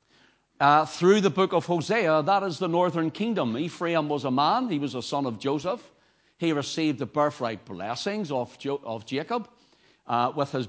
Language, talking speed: English, 180 wpm